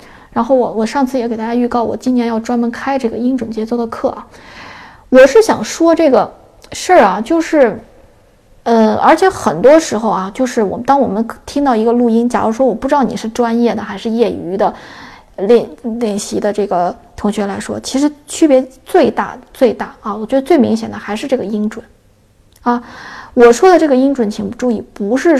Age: 20-39